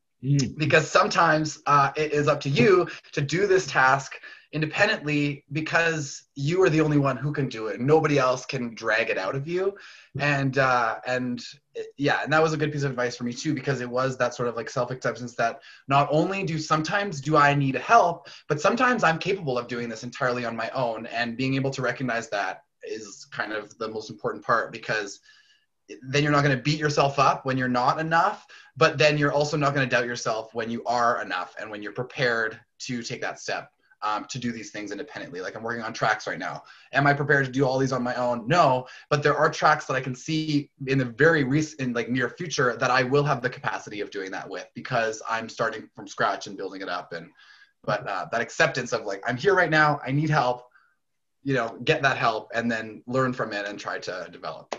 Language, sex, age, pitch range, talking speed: English, male, 20-39, 125-155 Hz, 230 wpm